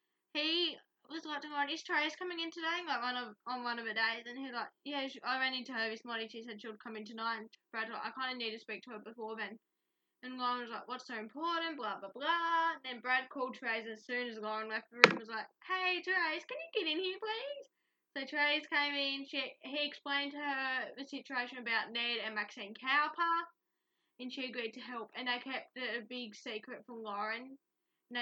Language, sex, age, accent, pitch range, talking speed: English, female, 10-29, Australian, 230-285 Hz, 240 wpm